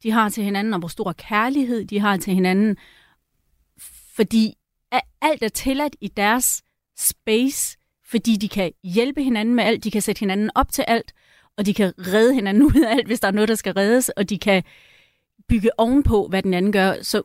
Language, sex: Danish, female